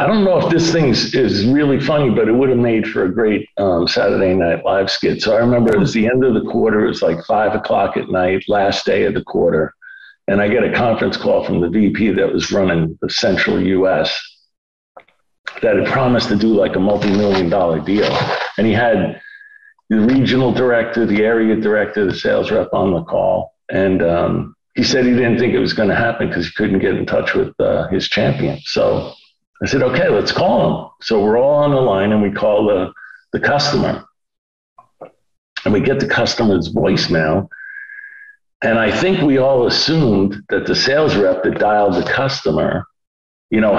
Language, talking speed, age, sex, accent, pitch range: English, 205 wpm, 50-69, male, American, 105-160 Hz